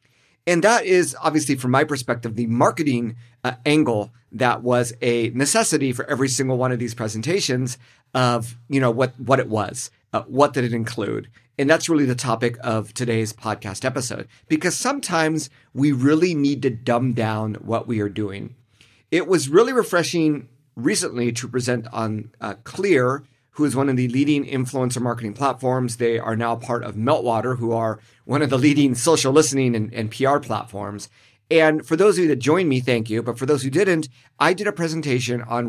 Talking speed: 190 wpm